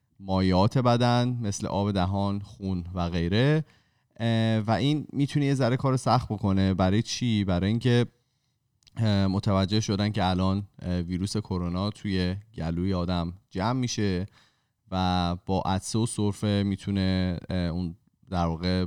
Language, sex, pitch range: Persian, male, 90-110 Hz